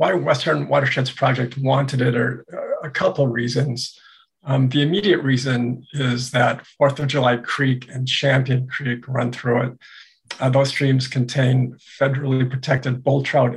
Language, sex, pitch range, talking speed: English, male, 130-145 Hz, 155 wpm